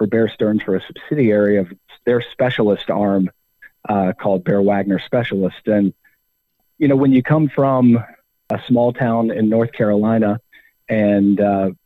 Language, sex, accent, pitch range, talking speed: English, male, American, 100-120 Hz, 150 wpm